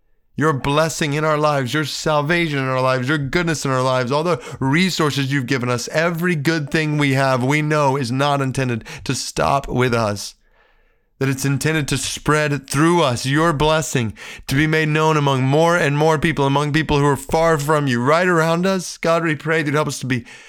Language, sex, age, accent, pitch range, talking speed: English, male, 30-49, American, 120-150 Hz, 210 wpm